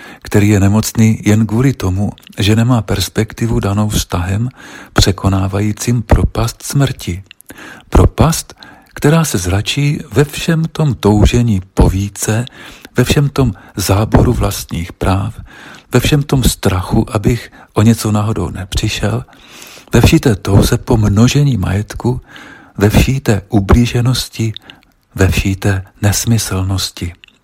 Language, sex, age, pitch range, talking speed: Czech, male, 50-69, 100-120 Hz, 110 wpm